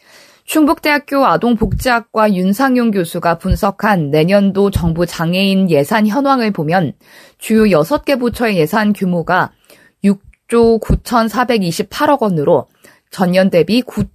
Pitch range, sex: 180-230 Hz, female